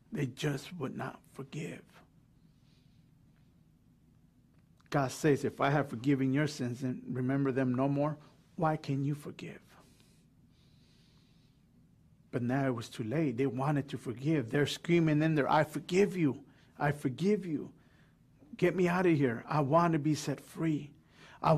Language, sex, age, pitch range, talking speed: English, male, 50-69, 130-150 Hz, 150 wpm